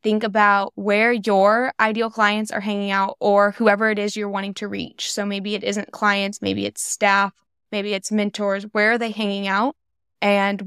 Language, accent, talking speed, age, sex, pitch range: English, American, 190 wpm, 10-29, female, 200-225 Hz